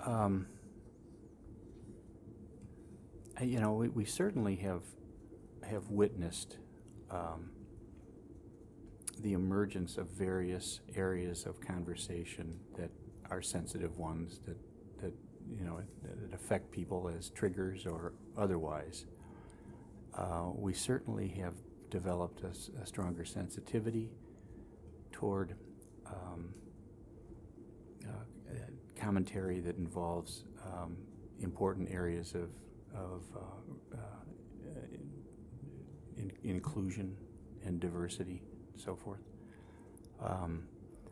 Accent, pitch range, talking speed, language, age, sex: American, 90-110 Hz, 90 wpm, English, 40-59, male